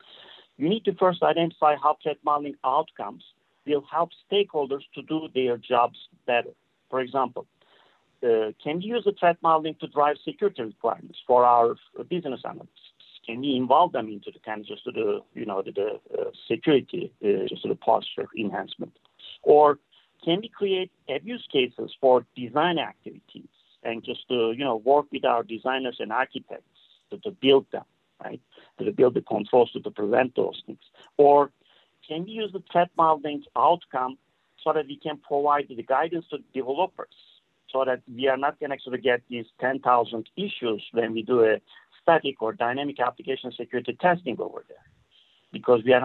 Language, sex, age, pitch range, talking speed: English, male, 50-69, 125-170 Hz, 175 wpm